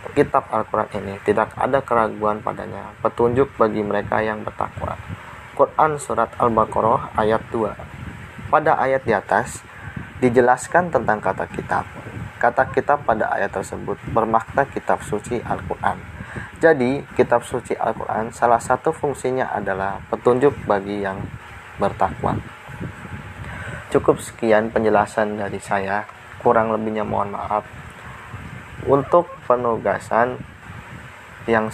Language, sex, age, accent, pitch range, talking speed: Indonesian, male, 20-39, native, 100-120 Hz, 110 wpm